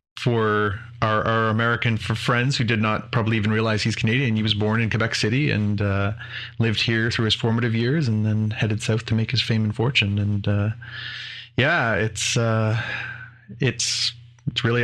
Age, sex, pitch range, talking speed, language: 30-49, male, 110-120 Hz, 185 wpm, English